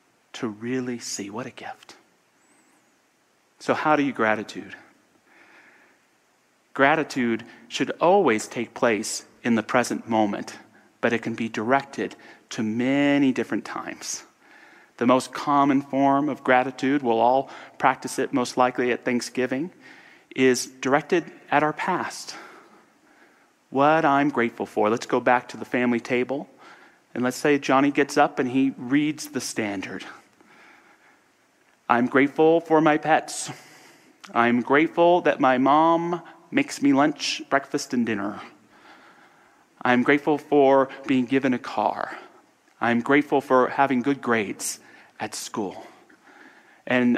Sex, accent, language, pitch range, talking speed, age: male, American, English, 120-145 Hz, 130 wpm, 40-59